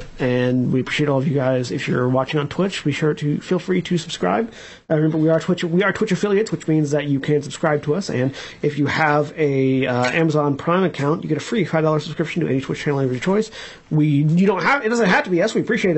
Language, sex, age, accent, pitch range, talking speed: English, male, 30-49, American, 135-175 Hz, 265 wpm